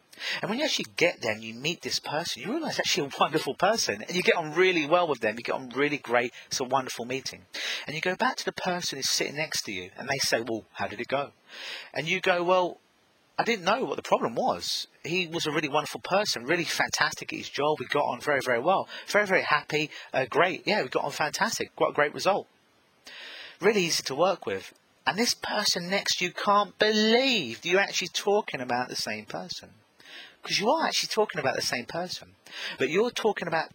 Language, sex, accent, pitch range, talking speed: English, male, British, 125-185 Hz, 230 wpm